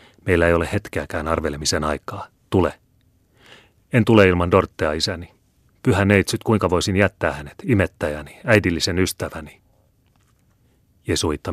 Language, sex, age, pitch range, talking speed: Finnish, male, 30-49, 80-95 Hz, 115 wpm